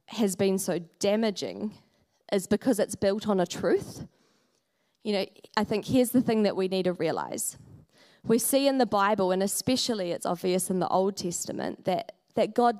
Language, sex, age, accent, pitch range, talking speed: English, female, 20-39, Australian, 185-230 Hz, 185 wpm